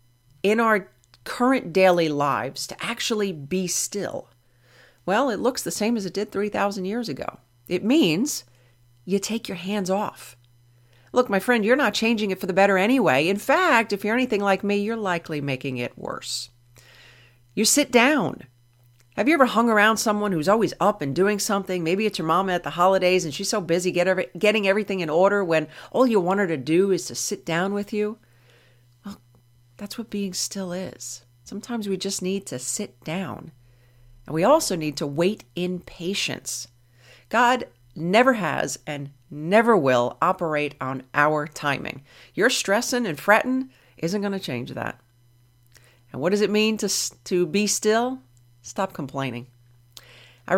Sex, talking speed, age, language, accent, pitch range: female, 170 wpm, 40-59, English, American, 125-205 Hz